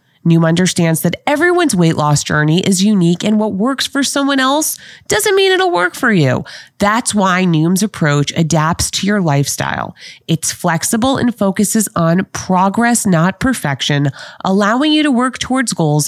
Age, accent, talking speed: 30-49, American, 160 wpm